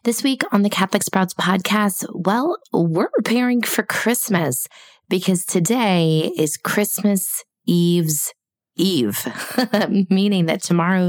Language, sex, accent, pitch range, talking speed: English, female, American, 145-190 Hz, 115 wpm